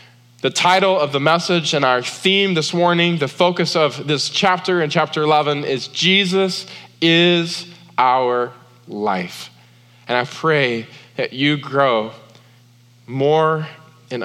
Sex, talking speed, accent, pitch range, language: male, 130 wpm, American, 120-165 Hz, English